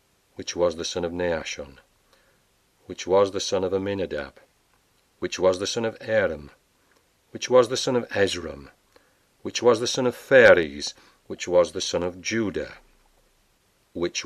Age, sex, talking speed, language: 40-59, male, 155 wpm, English